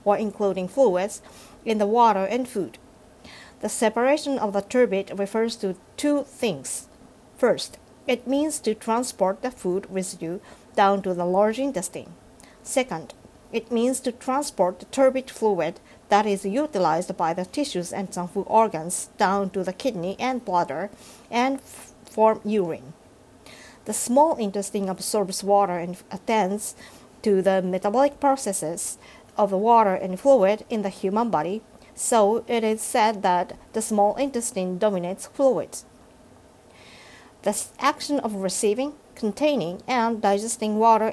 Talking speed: 140 wpm